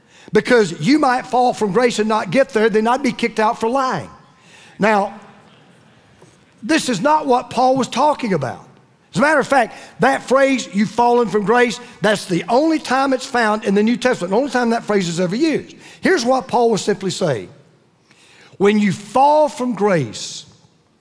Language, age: English, 50-69